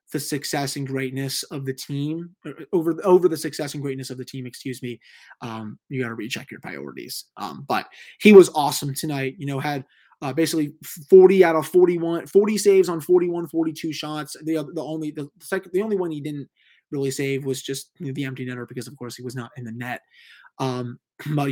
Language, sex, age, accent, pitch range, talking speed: English, male, 20-39, American, 135-165 Hz, 205 wpm